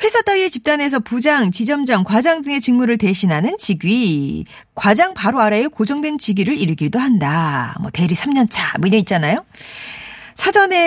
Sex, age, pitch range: female, 40-59, 175-260 Hz